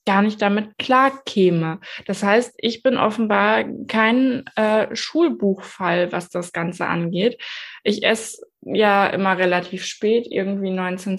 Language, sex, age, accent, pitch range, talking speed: German, female, 20-39, German, 190-235 Hz, 135 wpm